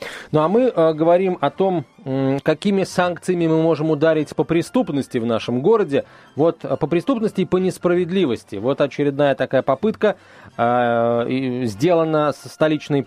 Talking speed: 140 wpm